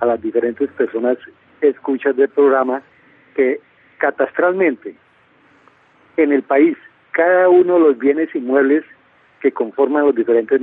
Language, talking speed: Spanish, 130 wpm